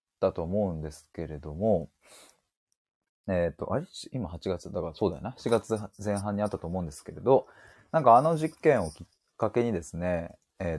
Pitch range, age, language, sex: 85-125 Hz, 20-39, Japanese, male